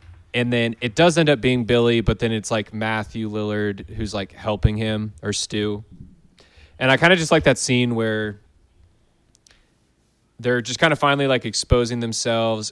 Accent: American